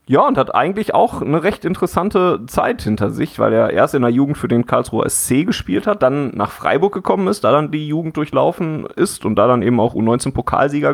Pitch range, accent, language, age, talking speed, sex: 110-145 Hz, German, German, 30-49, 220 wpm, male